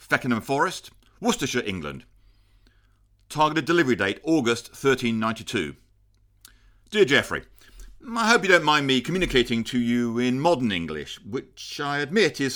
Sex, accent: male, British